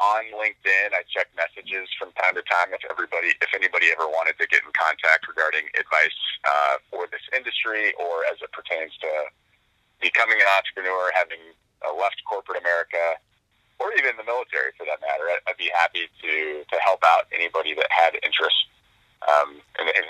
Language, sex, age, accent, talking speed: English, male, 30-49, American, 175 wpm